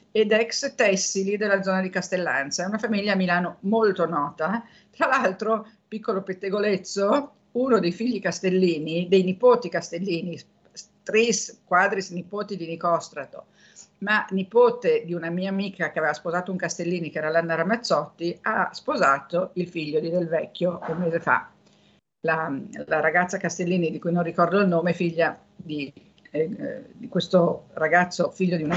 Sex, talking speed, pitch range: female, 155 wpm, 170-205 Hz